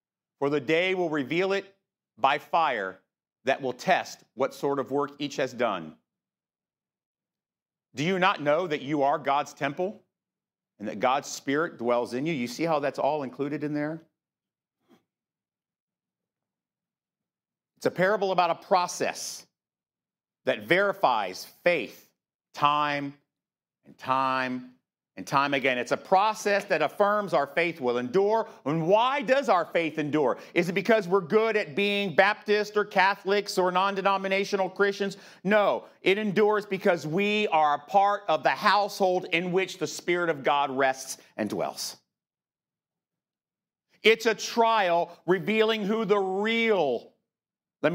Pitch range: 145-200 Hz